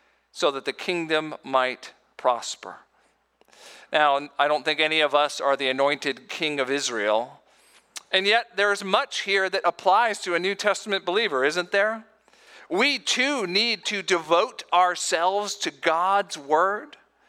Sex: male